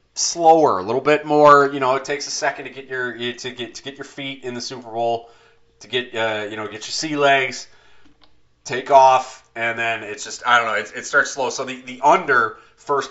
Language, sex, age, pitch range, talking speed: English, male, 30-49, 100-135 Hz, 235 wpm